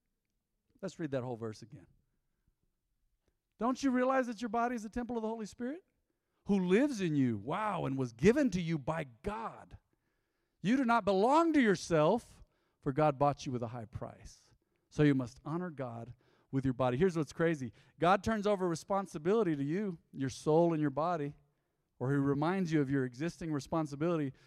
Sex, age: male, 50-69